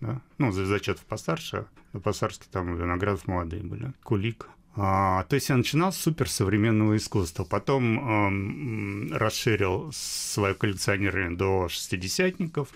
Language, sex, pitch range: Russian, male, 95-130 Hz